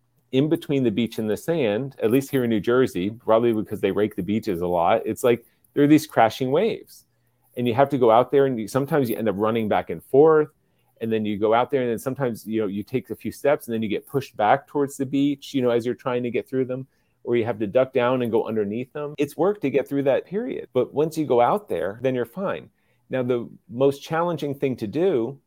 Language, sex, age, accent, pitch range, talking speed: English, male, 40-59, American, 110-140 Hz, 260 wpm